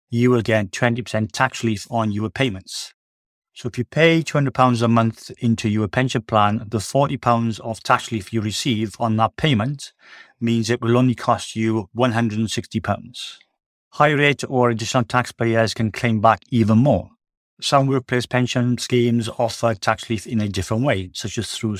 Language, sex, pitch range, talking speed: English, male, 110-125 Hz, 170 wpm